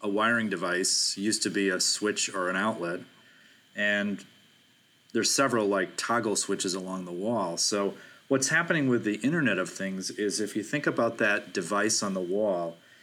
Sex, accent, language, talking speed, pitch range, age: male, American, English, 175 wpm, 95-115 Hz, 30-49